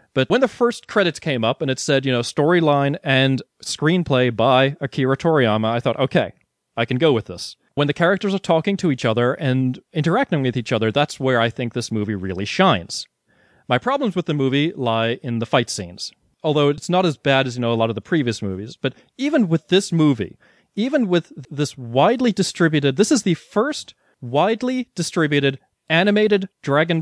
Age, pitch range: 30-49, 130-175 Hz